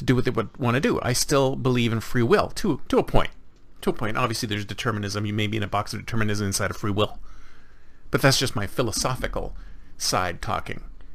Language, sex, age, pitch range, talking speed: English, male, 40-59, 115-165 Hz, 230 wpm